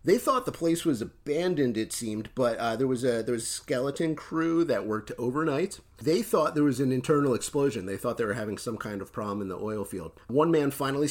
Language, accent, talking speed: English, American, 225 wpm